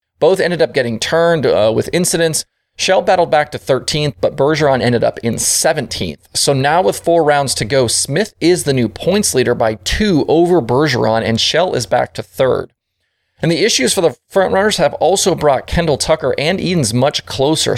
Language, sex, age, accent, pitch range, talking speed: English, male, 30-49, American, 115-165 Hz, 195 wpm